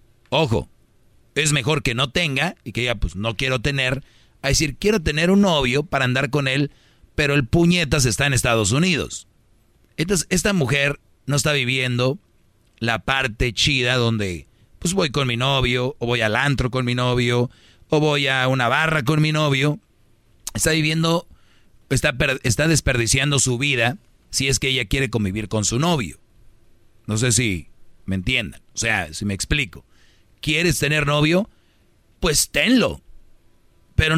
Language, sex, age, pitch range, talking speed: Spanish, male, 40-59, 115-145 Hz, 160 wpm